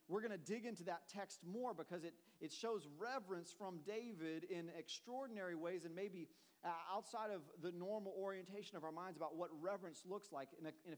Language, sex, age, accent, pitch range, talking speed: English, male, 40-59, American, 160-205 Hz, 195 wpm